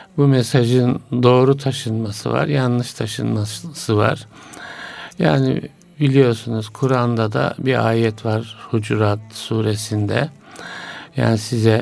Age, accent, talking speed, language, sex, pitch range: 60-79, native, 95 wpm, Turkish, male, 110-130 Hz